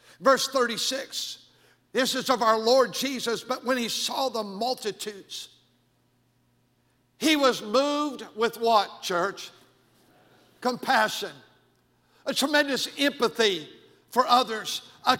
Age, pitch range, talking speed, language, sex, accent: 60-79, 230-275 Hz, 105 wpm, English, male, American